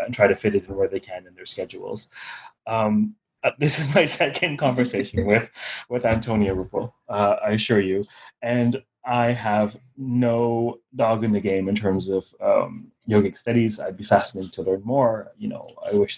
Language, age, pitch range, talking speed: English, 30-49, 100-125 Hz, 185 wpm